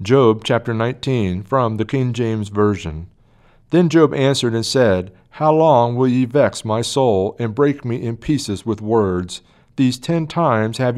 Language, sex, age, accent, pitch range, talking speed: English, male, 40-59, American, 115-145 Hz, 170 wpm